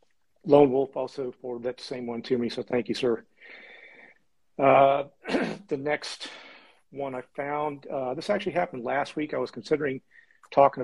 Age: 40-59